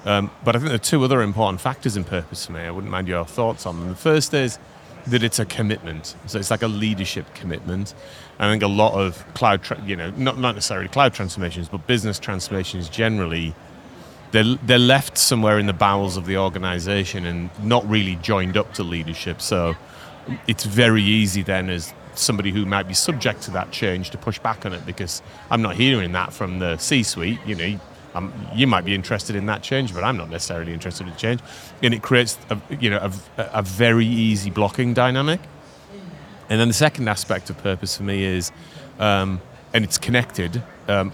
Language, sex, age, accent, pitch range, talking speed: English, male, 30-49, British, 90-115 Hz, 205 wpm